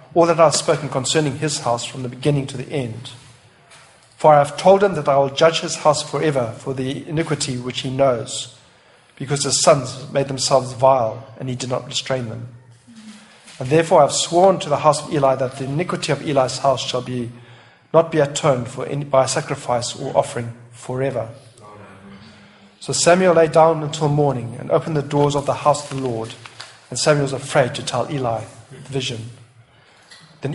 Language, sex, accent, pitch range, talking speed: English, male, South African, 125-150 Hz, 195 wpm